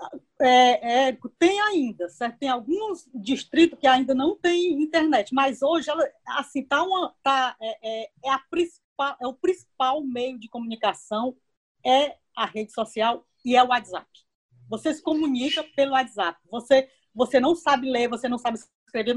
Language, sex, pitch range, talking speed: Portuguese, female, 225-315 Hz, 130 wpm